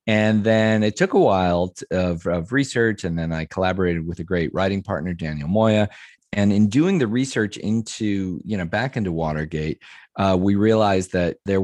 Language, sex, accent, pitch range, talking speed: English, male, American, 85-105 Hz, 185 wpm